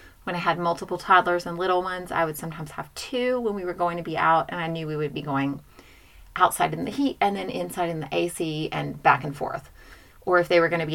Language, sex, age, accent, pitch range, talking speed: English, female, 30-49, American, 175-220 Hz, 265 wpm